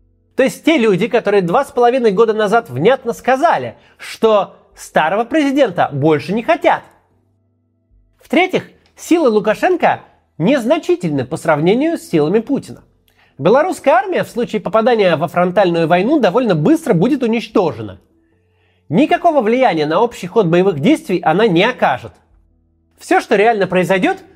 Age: 30-49